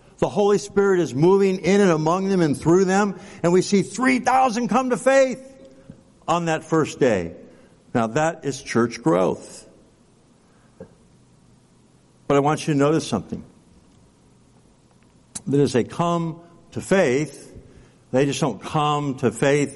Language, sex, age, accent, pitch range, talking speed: English, male, 60-79, American, 135-180 Hz, 145 wpm